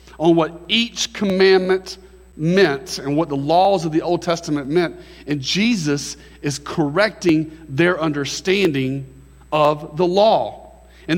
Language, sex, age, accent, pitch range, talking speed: English, male, 40-59, American, 115-170 Hz, 130 wpm